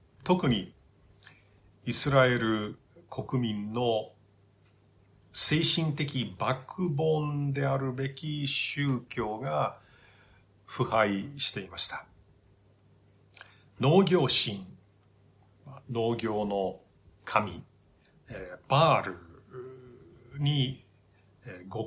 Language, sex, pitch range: Japanese, male, 100-135 Hz